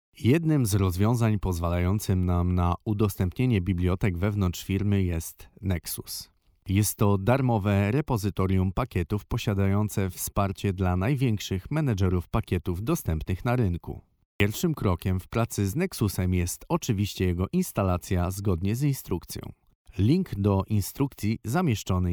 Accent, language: native, Polish